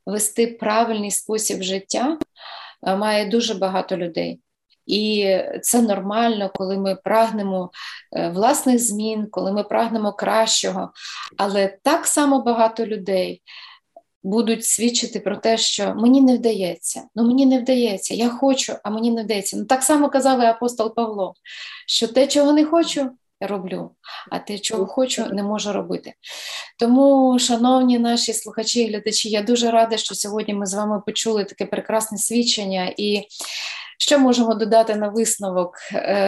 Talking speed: 145 wpm